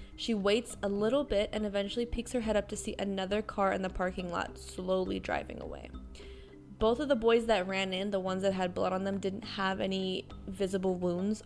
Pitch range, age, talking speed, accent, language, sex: 190-220 Hz, 20-39, 215 wpm, American, English, female